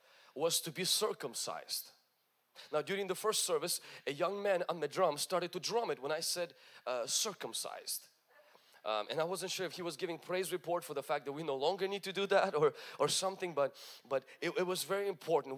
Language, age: English, 30-49